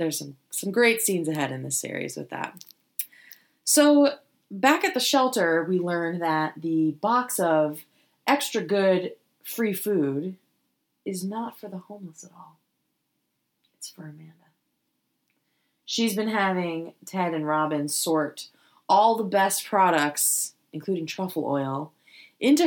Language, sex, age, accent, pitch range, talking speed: English, female, 30-49, American, 155-210 Hz, 135 wpm